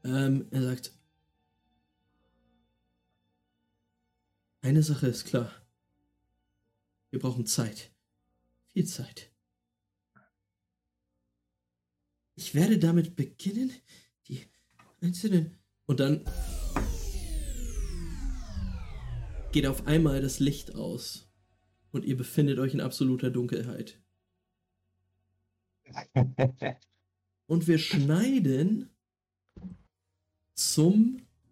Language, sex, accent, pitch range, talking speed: German, male, German, 90-155 Hz, 70 wpm